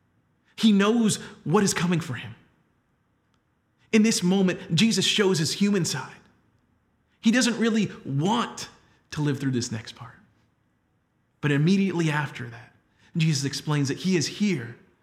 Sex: male